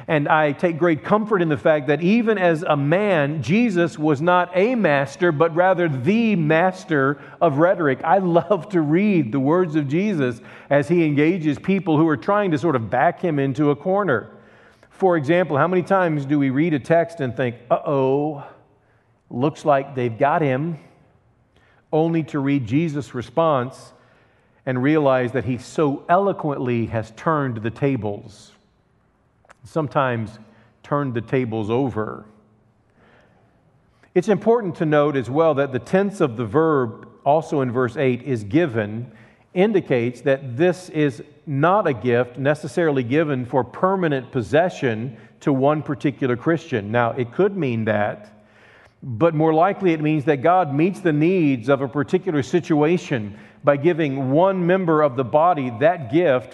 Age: 40-59